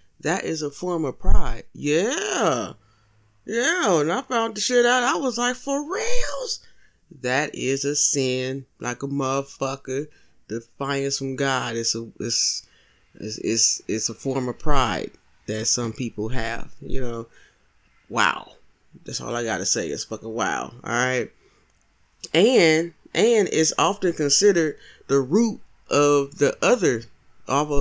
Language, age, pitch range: English, 20-39, 130-190 Hz